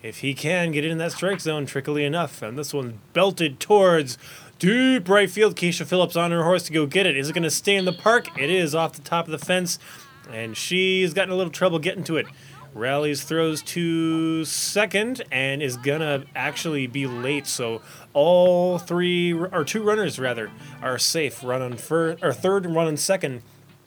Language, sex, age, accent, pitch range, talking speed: English, male, 20-39, American, 135-175 Hz, 205 wpm